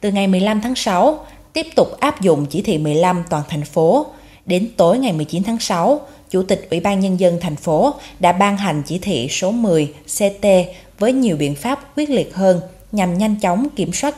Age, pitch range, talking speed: 20-39, 155-215 Hz, 205 wpm